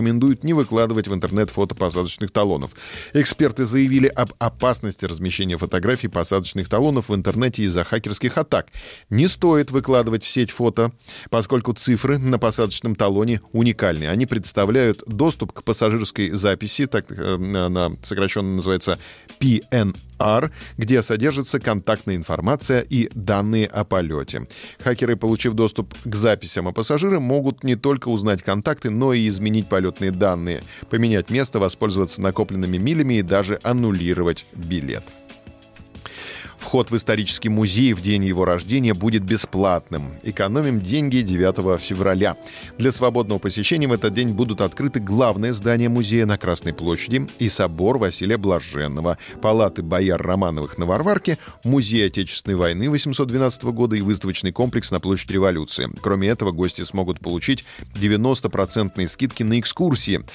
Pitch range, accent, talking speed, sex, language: 95-120 Hz, native, 135 wpm, male, Russian